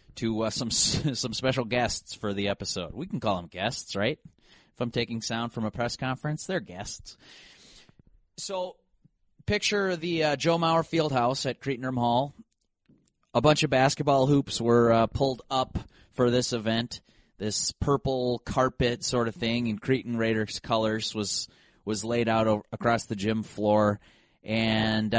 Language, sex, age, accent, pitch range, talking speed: English, male, 30-49, American, 110-135 Hz, 160 wpm